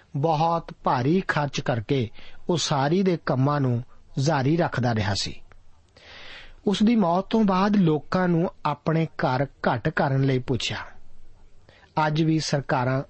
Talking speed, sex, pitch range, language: 135 wpm, male, 125-165 Hz, Punjabi